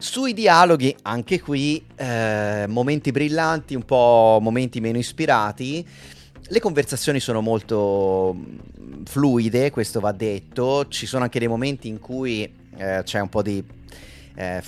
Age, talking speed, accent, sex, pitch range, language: 30-49, 135 wpm, native, male, 105-135 Hz, Italian